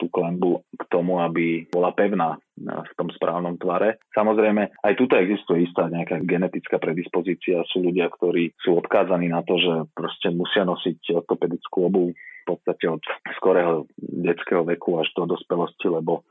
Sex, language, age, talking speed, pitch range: male, Slovak, 30-49, 150 wpm, 85-90 Hz